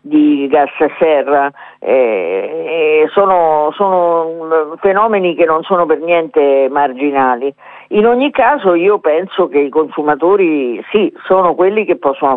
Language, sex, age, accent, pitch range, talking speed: Italian, female, 50-69, native, 140-180 Hz, 135 wpm